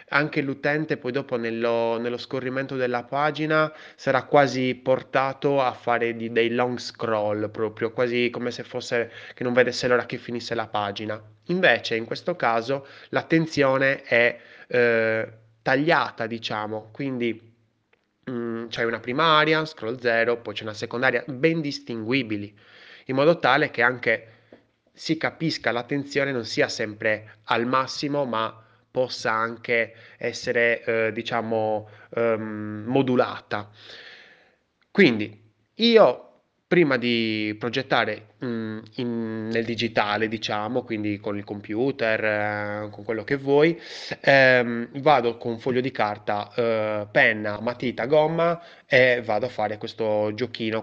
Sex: male